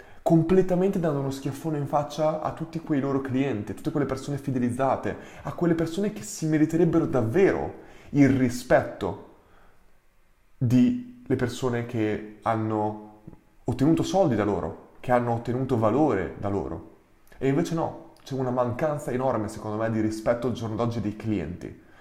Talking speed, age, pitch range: 155 wpm, 20-39, 105-135 Hz